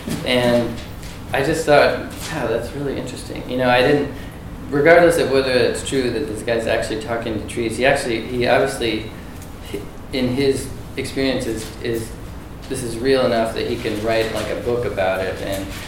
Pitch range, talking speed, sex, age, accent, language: 95-120 Hz, 180 wpm, male, 20-39, American, English